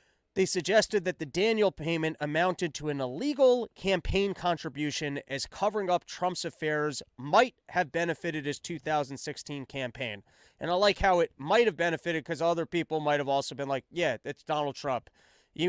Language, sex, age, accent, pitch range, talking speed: English, male, 30-49, American, 155-205 Hz, 160 wpm